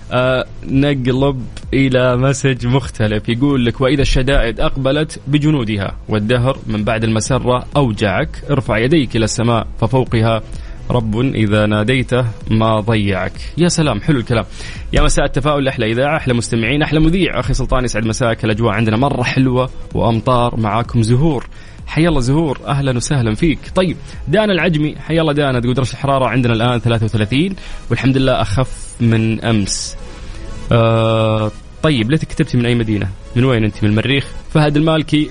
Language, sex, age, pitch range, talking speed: English, male, 20-39, 115-145 Hz, 145 wpm